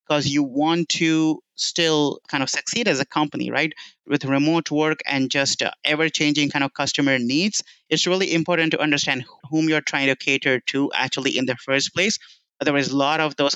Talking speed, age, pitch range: 190 wpm, 30-49, 135-160 Hz